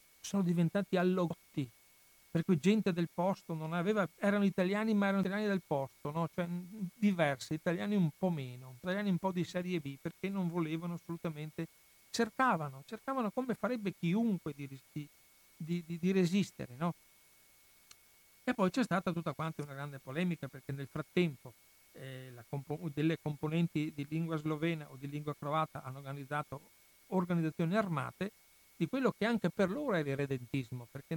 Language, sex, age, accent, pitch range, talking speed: Italian, male, 60-79, native, 145-185 Hz, 160 wpm